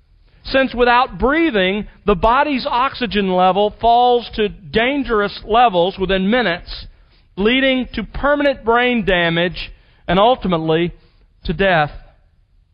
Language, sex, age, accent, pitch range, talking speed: English, male, 40-59, American, 170-230 Hz, 105 wpm